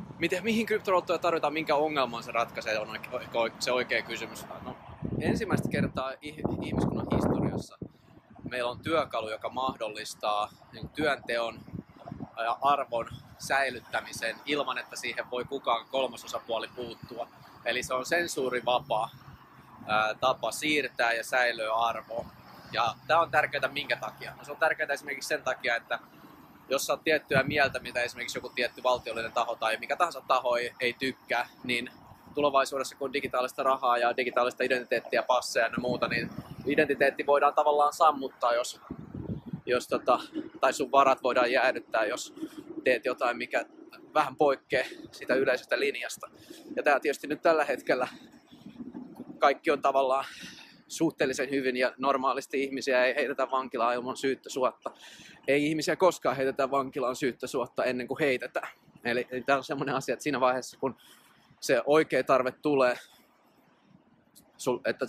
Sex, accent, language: male, native, Finnish